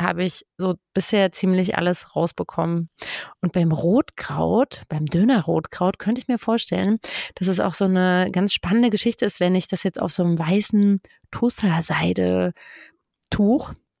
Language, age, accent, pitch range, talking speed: German, 30-49, German, 180-215 Hz, 150 wpm